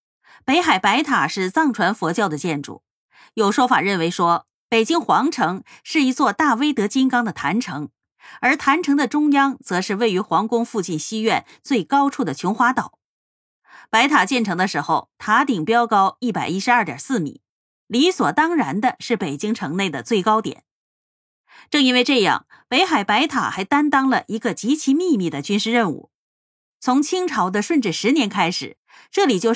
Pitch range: 190-280 Hz